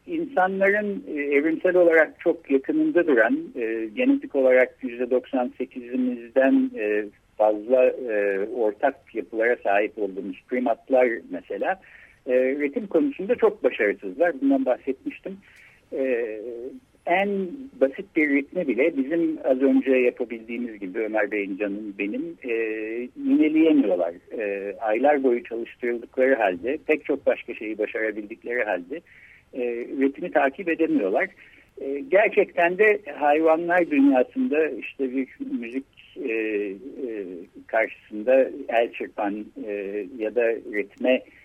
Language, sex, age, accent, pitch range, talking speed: Turkish, male, 60-79, native, 115-180 Hz, 110 wpm